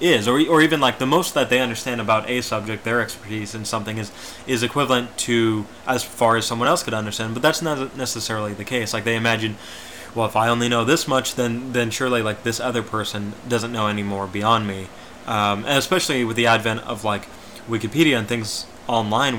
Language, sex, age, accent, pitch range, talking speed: English, male, 20-39, American, 110-125 Hz, 215 wpm